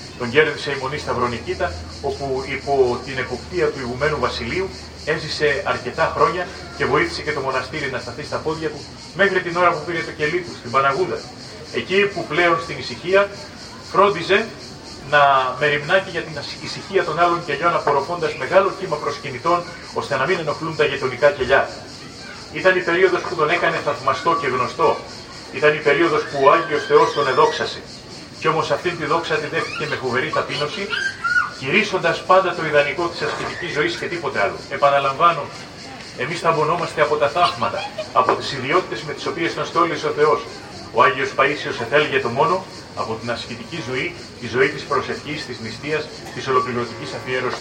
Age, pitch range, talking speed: 30-49, 140-175 Hz, 170 wpm